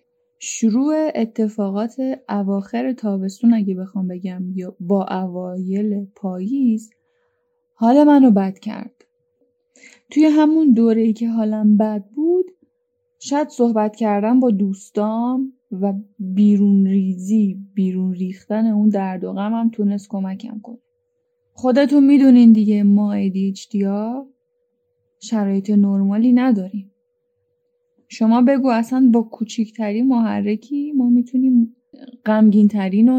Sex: female